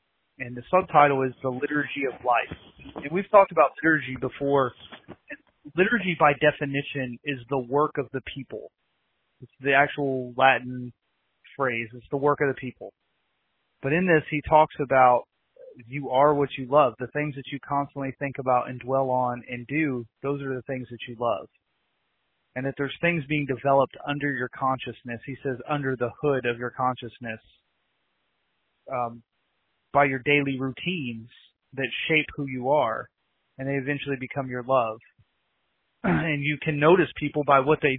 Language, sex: English, male